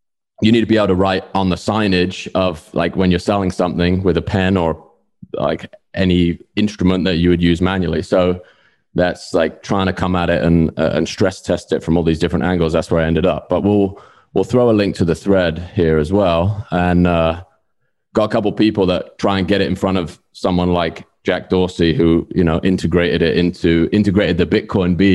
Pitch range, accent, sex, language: 85-100 Hz, British, male, English